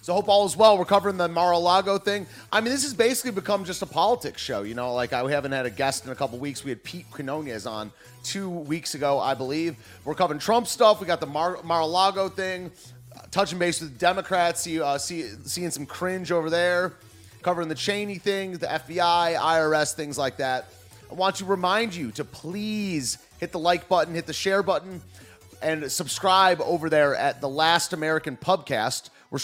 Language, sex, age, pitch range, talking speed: English, male, 30-49, 135-185 Hz, 205 wpm